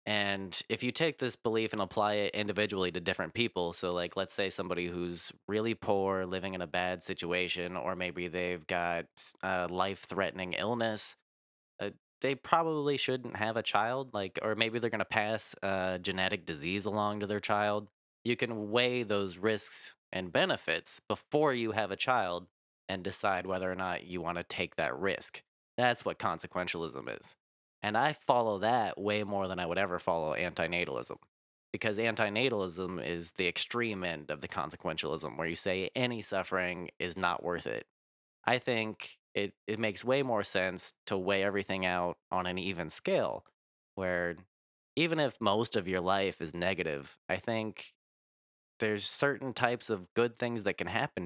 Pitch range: 90-110 Hz